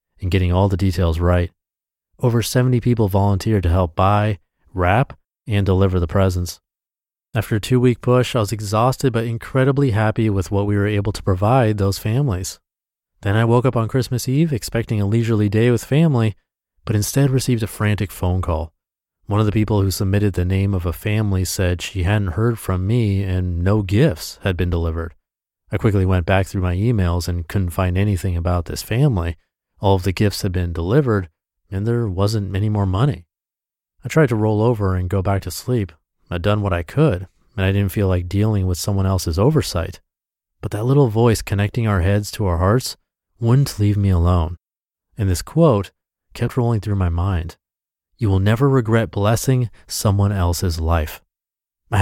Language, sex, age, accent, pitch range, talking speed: English, male, 30-49, American, 90-115 Hz, 190 wpm